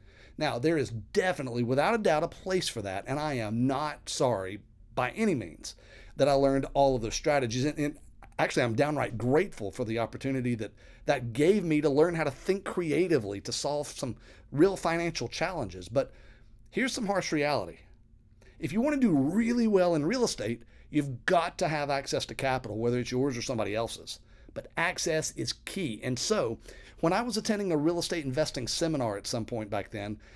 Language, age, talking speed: English, 40-59, 195 wpm